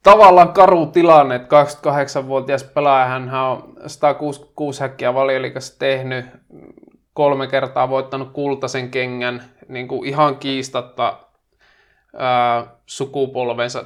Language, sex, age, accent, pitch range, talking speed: Finnish, male, 20-39, native, 125-145 Hz, 90 wpm